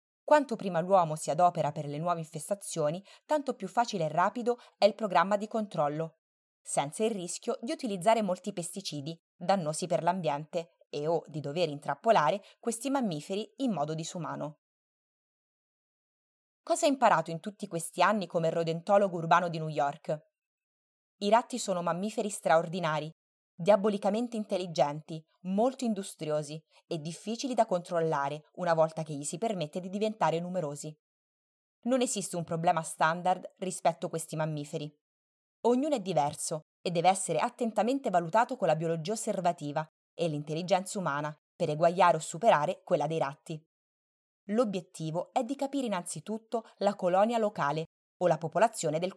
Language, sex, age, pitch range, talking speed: Italian, female, 20-39, 160-215 Hz, 145 wpm